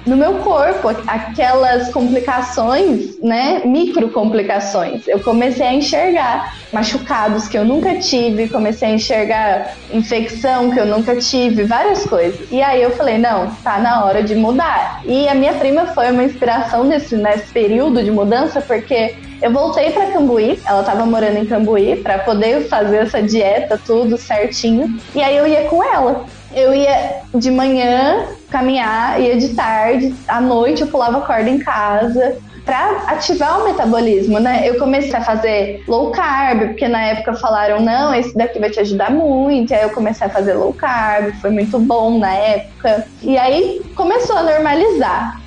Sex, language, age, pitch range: female, Portuguese, 20-39, 220-275 Hz